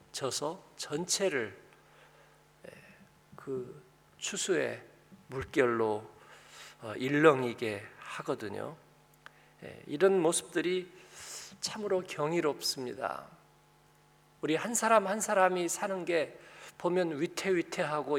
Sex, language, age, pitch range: male, Korean, 50-69, 135-180 Hz